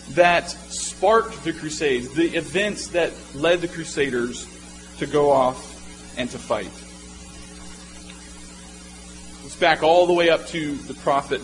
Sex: male